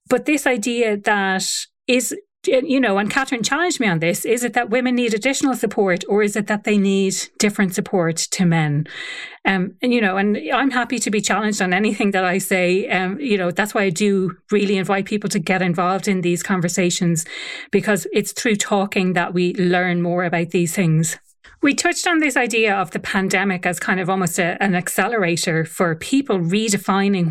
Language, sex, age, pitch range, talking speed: English, female, 30-49, 180-215 Hz, 195 wpm